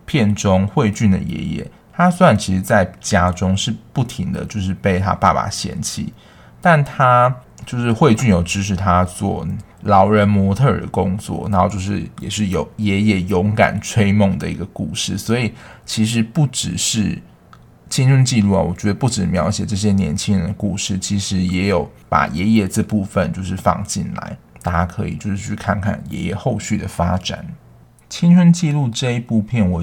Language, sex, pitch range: Chinese, male, 95-110 Hz